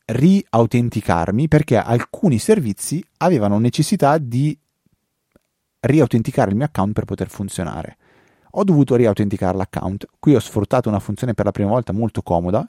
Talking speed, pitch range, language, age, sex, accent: 135 wpm, 95-120 Hz, Italian, 30-49, male, native